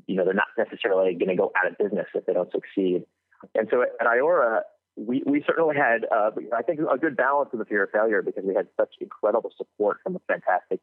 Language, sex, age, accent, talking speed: English, male, 30-49, American, 240 wpm